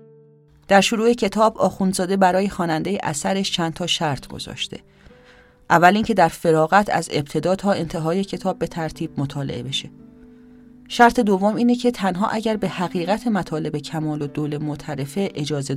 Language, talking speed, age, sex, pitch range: English, 145 wpm, 30-49, female, 140-185 Hz